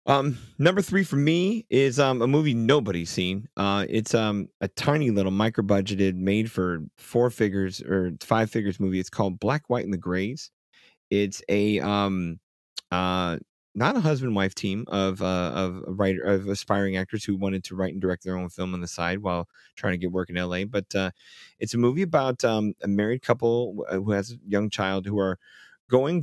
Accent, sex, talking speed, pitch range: American, male, 205 wpm, 95-110 Hz